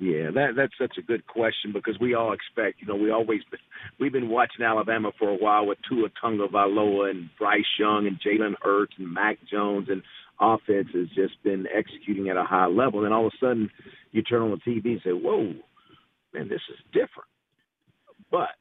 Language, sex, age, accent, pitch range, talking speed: English, male, 50-69, American, 95-125 Hz, 205 wpm